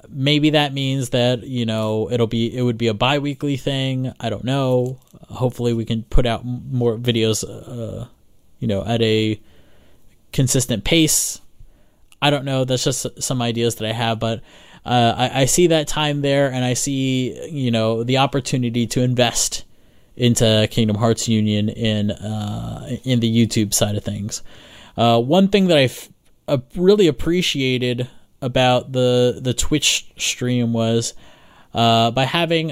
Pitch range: 115-135 Hz